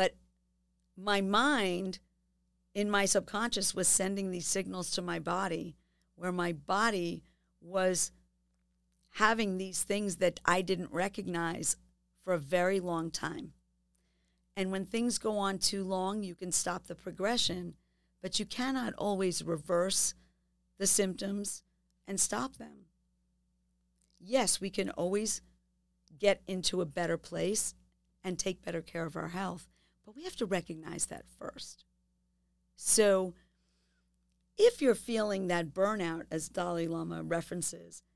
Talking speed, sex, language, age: 130 wpm, female, English, 50-69